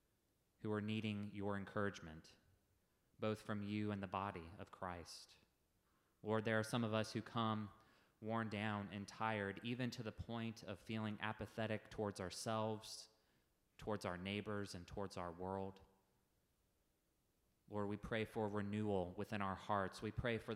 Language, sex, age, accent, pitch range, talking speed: English, male, 30-49, American, 95-110 Hz, 150 wpm